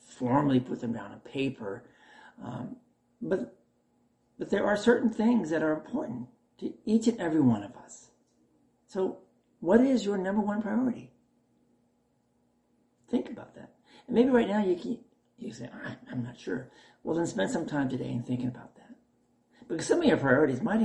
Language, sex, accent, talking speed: English, male, American, 175 wpm